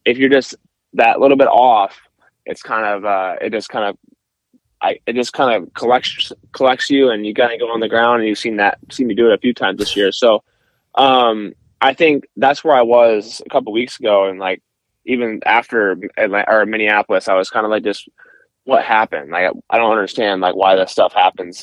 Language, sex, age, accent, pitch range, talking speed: English, male, 20-39, American, 105-135 Hz, 225 wpm